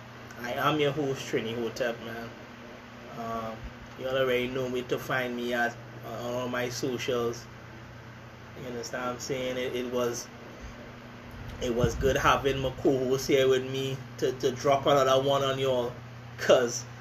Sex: male